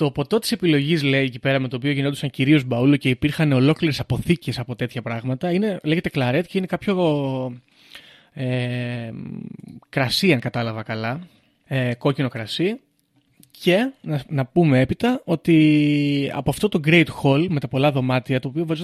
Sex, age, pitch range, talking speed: male, 20-39, 130-175 Hz, 165 wpm